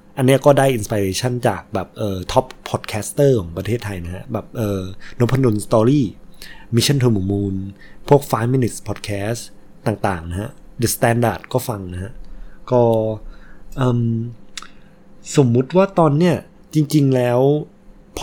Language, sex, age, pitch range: Thai, male, 20-39, 105-135 Hz